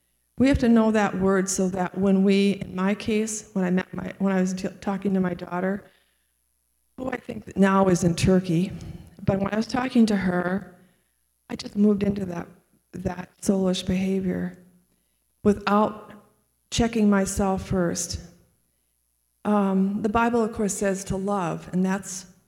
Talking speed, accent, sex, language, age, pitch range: 165 wpm, American, female, English, 40-59, 185-225 Hz